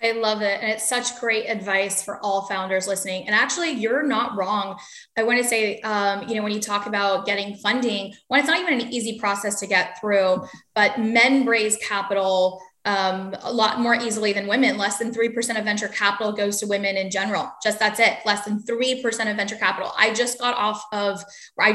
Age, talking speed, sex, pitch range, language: 10-29, 210 wpm, female, 200-245 Hz, English